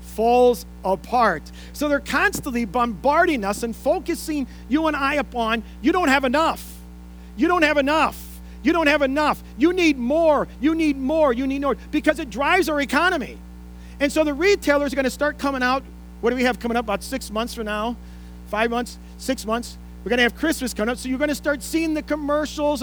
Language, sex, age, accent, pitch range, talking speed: English, male, 40-59, American, 205-280 Hz, 210 wpm